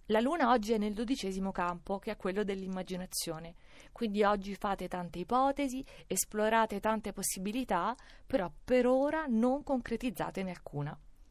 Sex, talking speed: female, 135 wpm